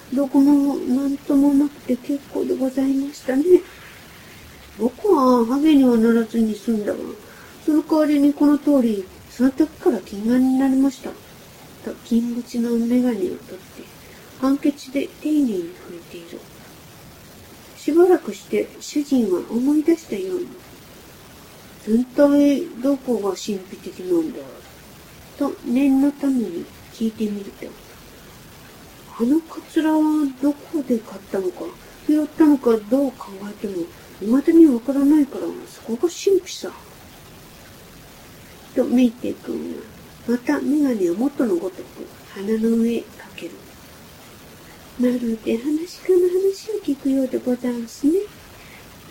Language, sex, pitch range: Japanese, female, 230-300 Hz